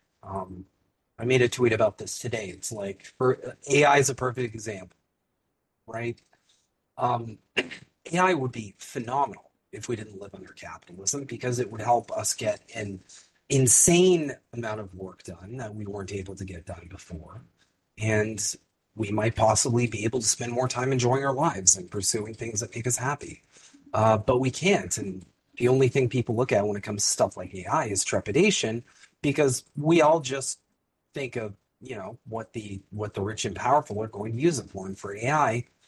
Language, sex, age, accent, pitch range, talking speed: English, male, 30-49, American, 100-135 Hz, 185 wpm